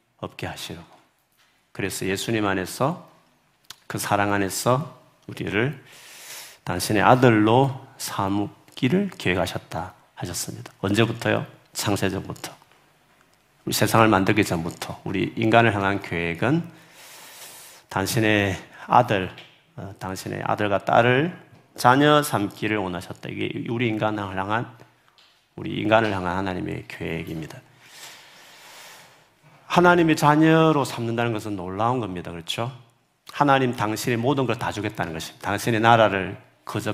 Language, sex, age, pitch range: Korean, male, 40-59, 100-130 Hz